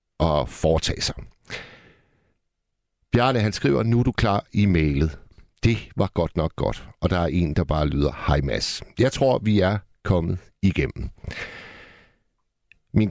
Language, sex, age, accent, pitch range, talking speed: Danish, male, 60-79, native, 90-120 Hz, 150 wpm